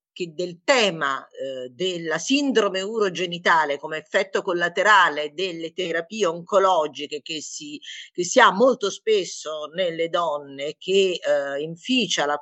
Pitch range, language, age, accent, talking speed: 160-210 Hz, Italian, 50-69, native, 120 wpm